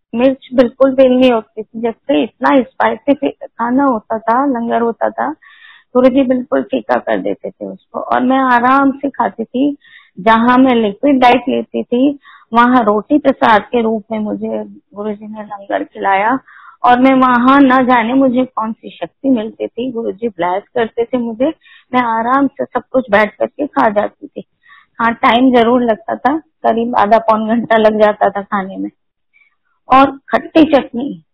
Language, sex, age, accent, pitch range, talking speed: Hindi, female, 20-39, native, 225-270 Hz, 170 wpm